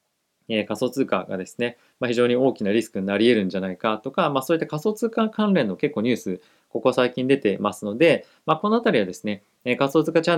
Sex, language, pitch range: male, Japanese, 105-145 Hz